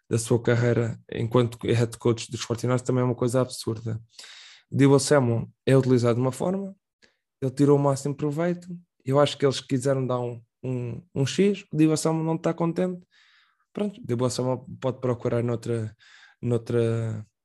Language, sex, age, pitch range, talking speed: Portuguese, male, 20-39, 120-140 Hz, 160 wpm